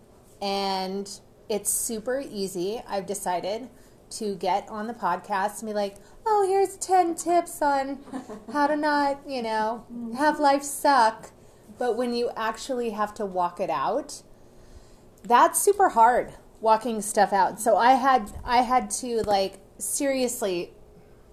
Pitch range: 195-250 Hz